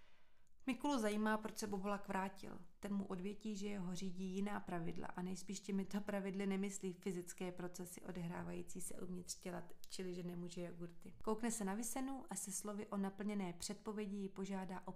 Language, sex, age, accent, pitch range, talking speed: Czech, female, 30-49, native, 185-205 Hz, 170 wpm